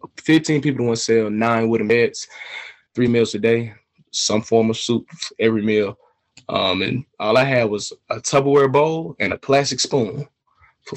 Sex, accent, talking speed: male, American, 175 wpm